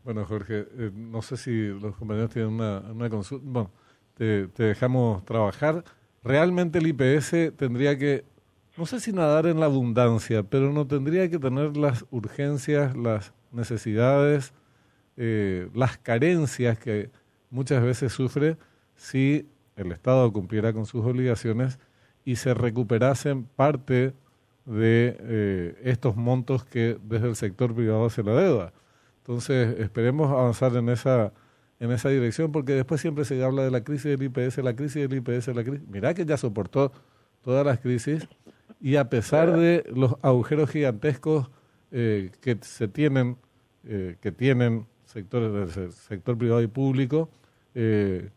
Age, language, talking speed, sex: 40-59, Spanish, 150 wpm, male